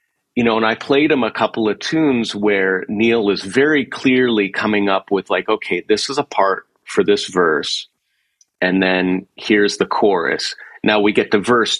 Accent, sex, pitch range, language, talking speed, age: American, male, 90-115 Hz, English, 190 wpm, 40-59